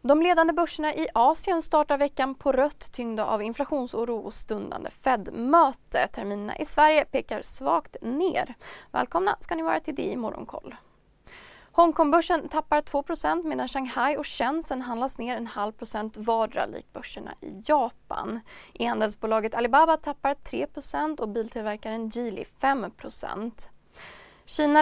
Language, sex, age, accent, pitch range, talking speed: Swedish, female, 20-39, native, 235-295 Hz, 135 wpm